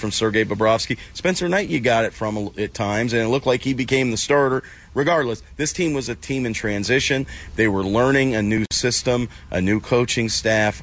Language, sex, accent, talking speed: English, male, American, 205 wpm